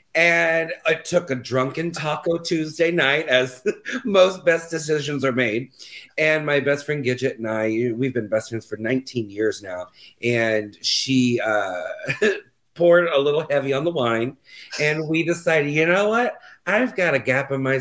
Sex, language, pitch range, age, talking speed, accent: male, English, 120-165 Hz, 40-59, 170 wpm, American